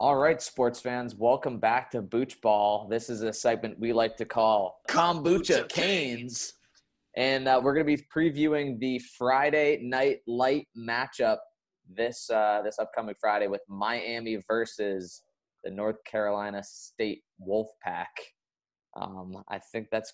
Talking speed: 140 wpm